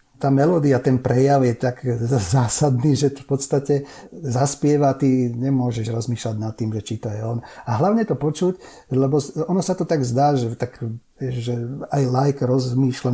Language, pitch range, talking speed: Slovak, 120-145 Hz, 170 wpm